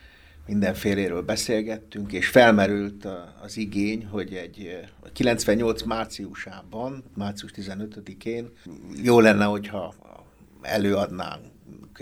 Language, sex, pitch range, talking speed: Hungarian, male, 95-115 Hz, 90 wpm